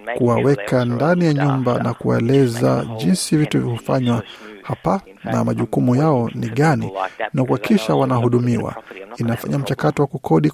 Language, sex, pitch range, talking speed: Swahili, male, 120-150 Hz, 130 wpm